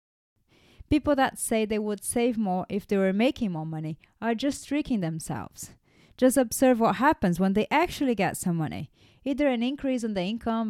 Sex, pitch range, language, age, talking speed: female, 190-255 Hz, English, 30-49, 185 wpm